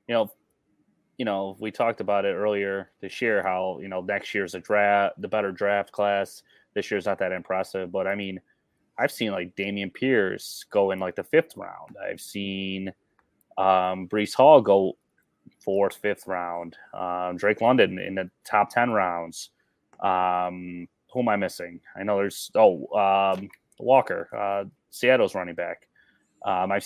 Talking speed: 170 wpm